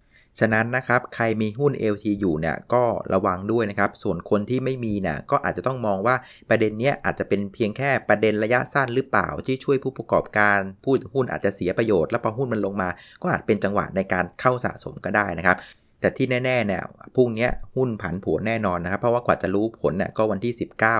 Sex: male